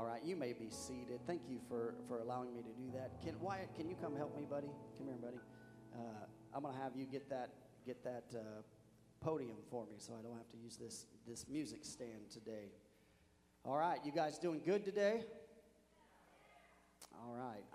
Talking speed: 200 wpm